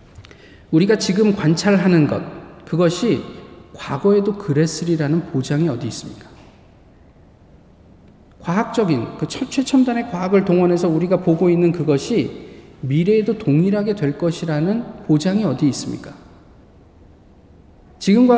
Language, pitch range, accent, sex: Korean, 120-195 Hz, native, male